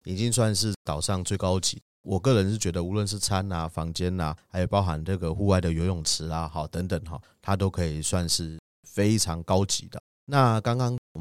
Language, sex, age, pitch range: Chinese, male, 30-49, 85-105 Hz